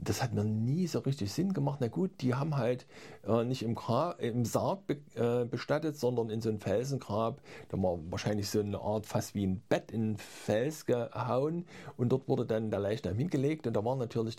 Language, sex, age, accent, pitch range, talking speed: German, male, 50-69, German, 110-140 Hz, 215 wpm